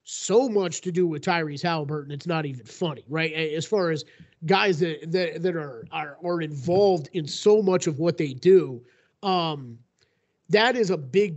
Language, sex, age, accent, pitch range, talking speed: English, male, 30-49, American, 160-210 Hz, 185 wpm